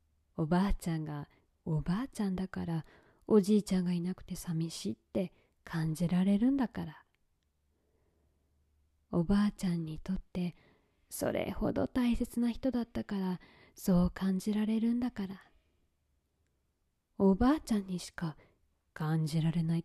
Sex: female